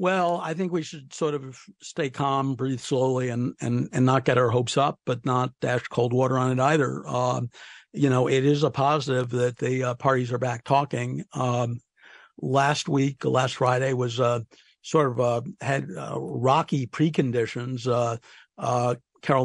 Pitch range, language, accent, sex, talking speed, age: 125-145 Hz, English, American, male, 180 wpm, 60-79